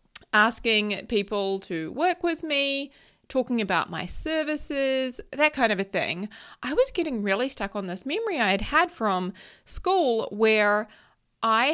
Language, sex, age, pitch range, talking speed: English, female, 30-49, 190-245 Hz, 155 wpm